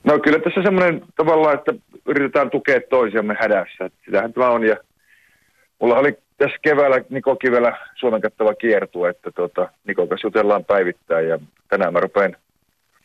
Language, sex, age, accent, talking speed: Finnish, male, 40-59, native, 150 wpm